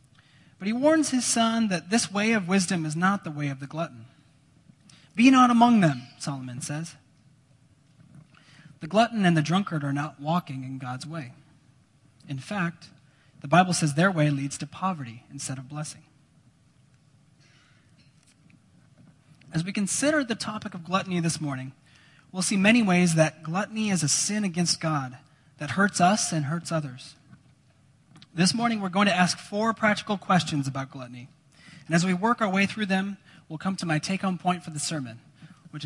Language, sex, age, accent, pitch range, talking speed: English, male, 30-49, American, 140-180 Hz, 170 wpm